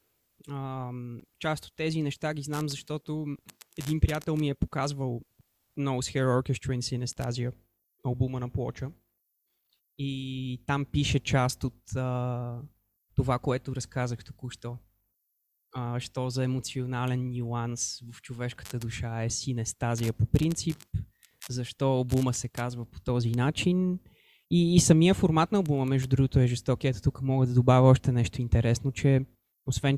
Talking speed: 140 wpm